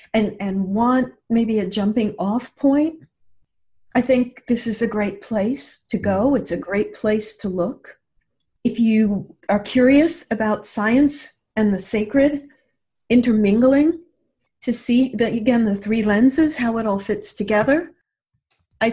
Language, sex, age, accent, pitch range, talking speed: English, female, 50-69, American, 205-260 Hz, 145 wpm